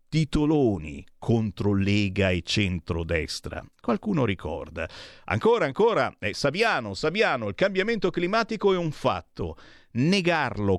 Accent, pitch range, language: native, 95-145 Hz, Italian